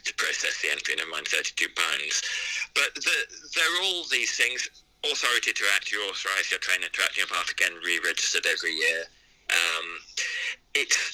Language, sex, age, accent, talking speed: English, male, 30-49, British, 170 wpm